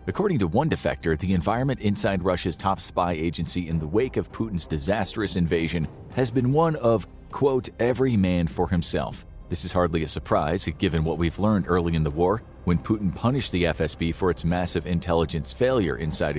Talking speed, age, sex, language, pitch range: 185 wpm, 40-59, male, English, 85-125 Hz